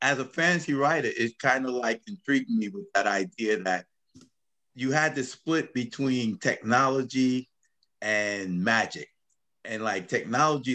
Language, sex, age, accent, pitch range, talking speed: English, male, 50-69, American, 105-145 Hz, 140 wpm